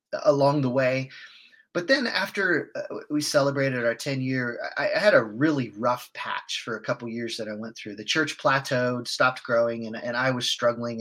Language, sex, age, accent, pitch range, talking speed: English, male, 30-49, American, 120-145 Hz, 190 wpm